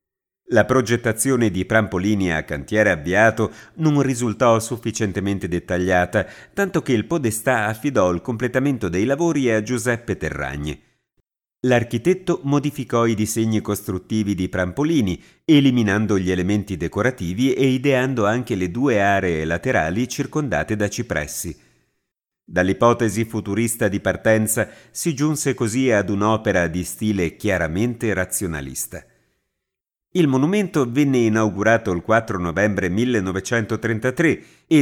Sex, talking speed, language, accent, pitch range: male, 115 wpm, Italian, native, 95-130 Hz